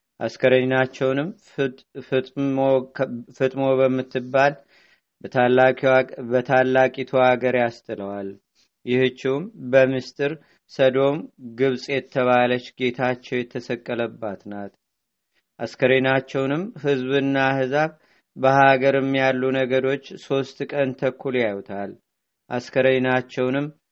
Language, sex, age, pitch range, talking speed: Amharic, male, 40-59, 125-135 Hz, 70 wpm